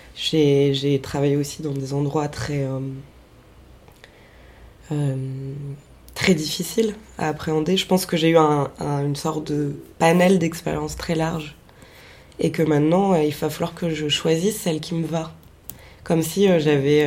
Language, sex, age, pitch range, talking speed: French, female, 20-39, 145-185 Hz, 160 wpm